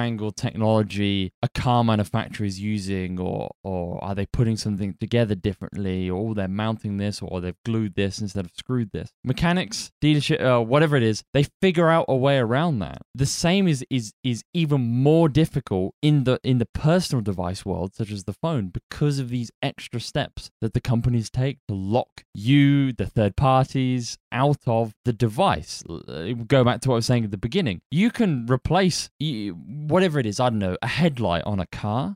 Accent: British